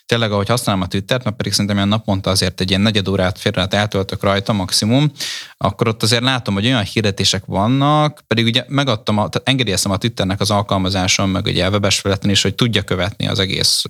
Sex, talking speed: male, 205 wpm